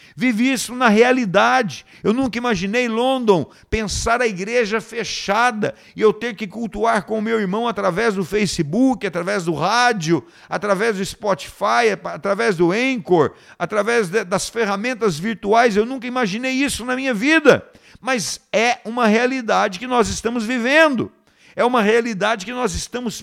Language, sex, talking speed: Portuguese, male, 150 wpm